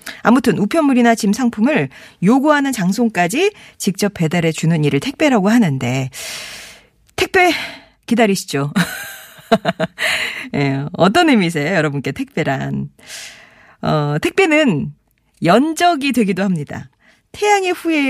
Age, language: 40-59, Korean